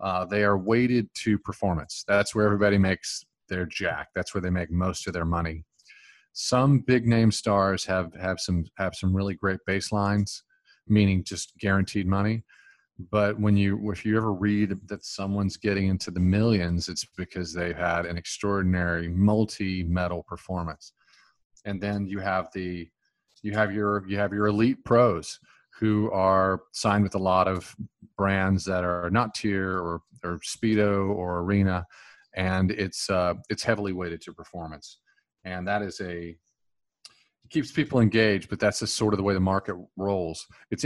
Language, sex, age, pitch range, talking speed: English, male, 40-59, 90-105 Hz, 175 wpm